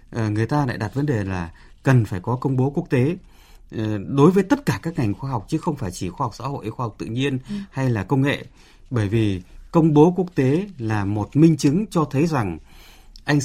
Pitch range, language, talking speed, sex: 110-160 Hz, Vietnamese, 230 wpm, male